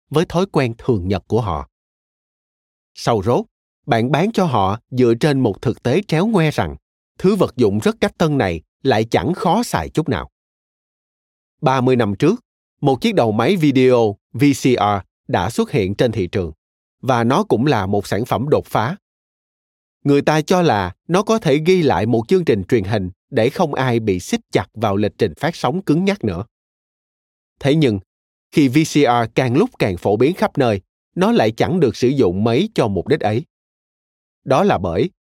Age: 20-39